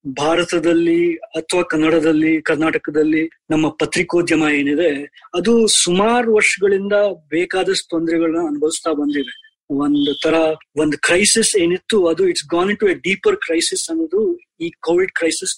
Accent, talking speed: native, 115 wpm